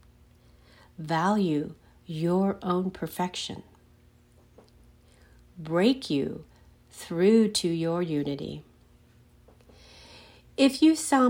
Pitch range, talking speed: 150-215 Hz, 70 wpm